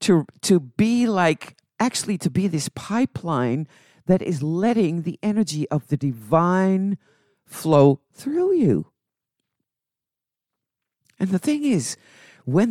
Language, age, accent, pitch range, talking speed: English, 50-69, American, 145-195 Hz, 120 wpm